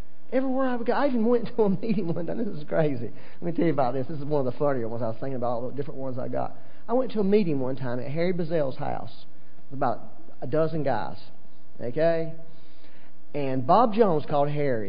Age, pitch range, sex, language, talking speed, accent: 40-59, 120-175 Hz, male, English, 245 wpm, American